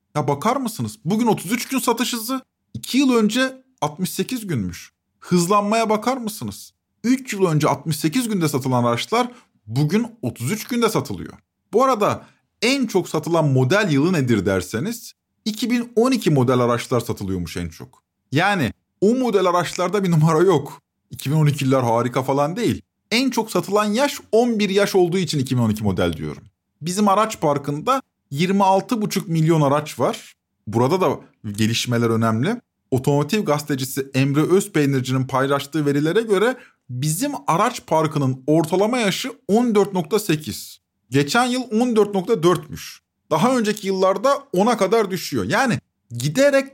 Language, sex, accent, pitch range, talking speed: Turkish, male, native, 130-220 Hz, 125 wpm